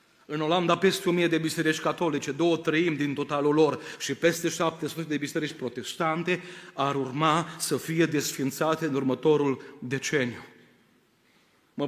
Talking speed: 135 wpm